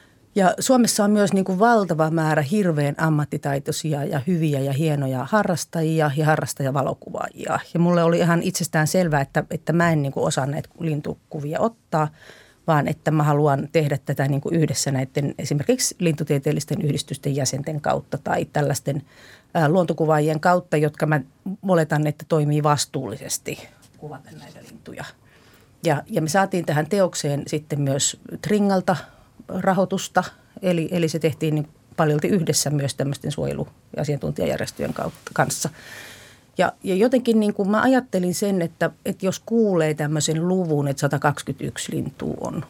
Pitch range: 145-180 Hz